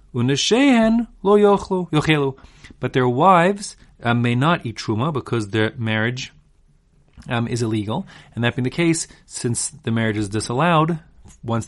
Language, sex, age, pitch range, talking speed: English, male, 30-49, 110-155 Hz, 130 wpm